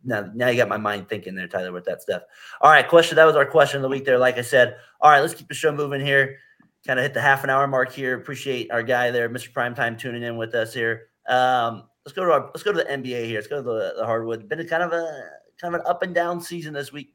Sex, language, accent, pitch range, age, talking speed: male, English, American, 115-145 Hz, 30-49, 300 wpm